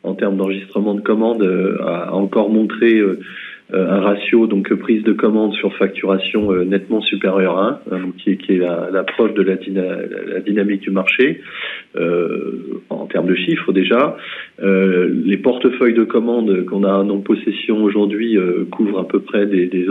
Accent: French